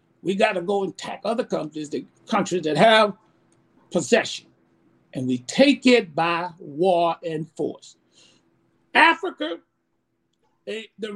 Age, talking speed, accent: 60-79, 125 wpm, American